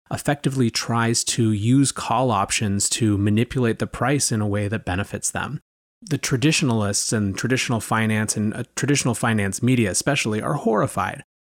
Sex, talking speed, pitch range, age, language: male, 145 wpm, 105-125 Hz, 30-49, English